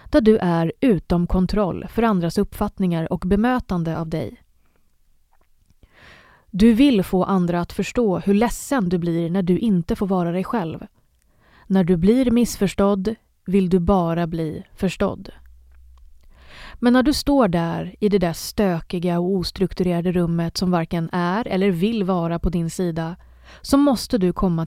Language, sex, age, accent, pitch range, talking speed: English, female, 30-49, Swedish, 170-205 Hz, 155 wpm